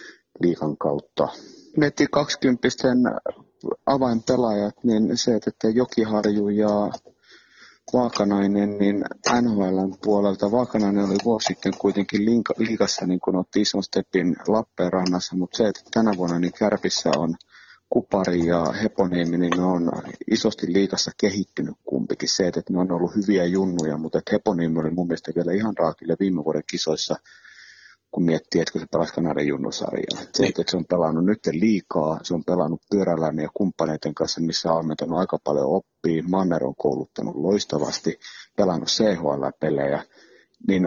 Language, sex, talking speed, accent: Finnish, male, 135 wpm, native